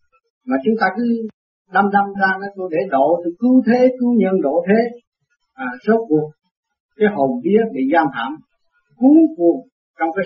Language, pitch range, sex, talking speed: Vietnamese, 155-235 Hz, male, 165 wpm